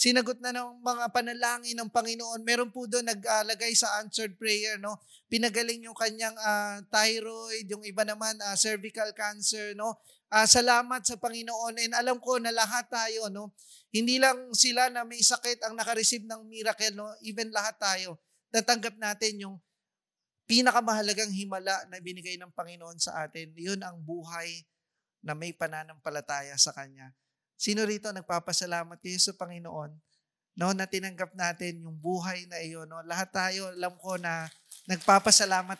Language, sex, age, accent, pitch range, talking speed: English, male, 20-39, Filipino, 185-230 Hz, 160 wpm